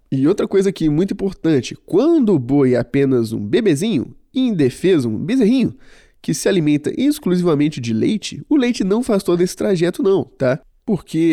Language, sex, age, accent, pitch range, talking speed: Portuguese, male, 20-39, Brazilian, 140-220 Hz, 175 wpm